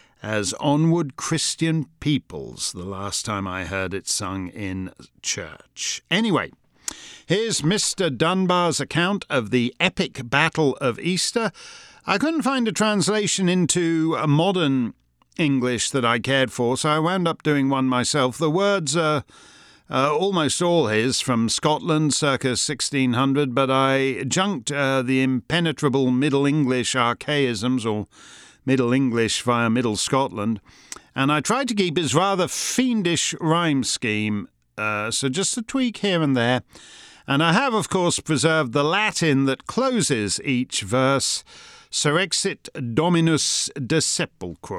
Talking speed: 135 wpm